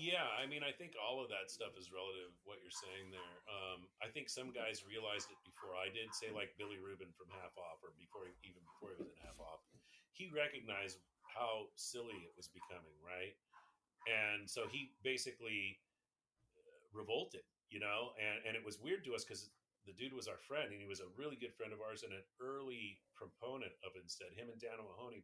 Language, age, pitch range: English, 40-59, 95-135 Hz